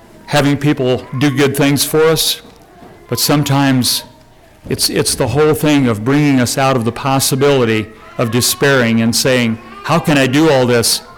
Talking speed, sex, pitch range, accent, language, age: 165 wpm, male, 115-140 Hz, American, English, 40-59